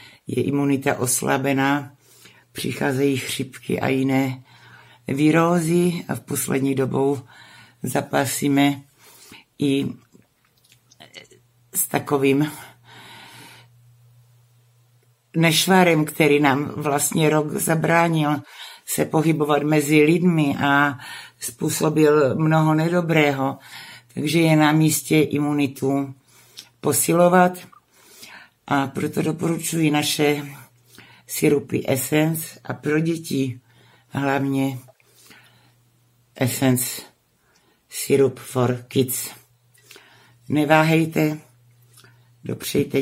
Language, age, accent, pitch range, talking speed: Czech, 60-79, native, 125-150 Hz, 75 wpm